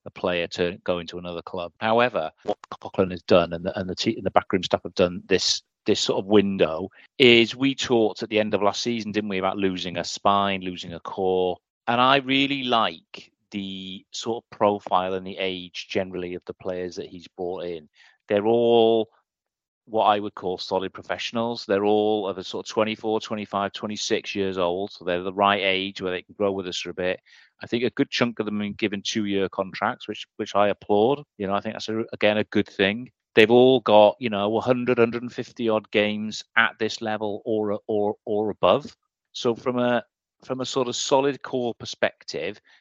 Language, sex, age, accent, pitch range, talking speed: English, male, 30-49, British, 95-115 Hz, 210 wpm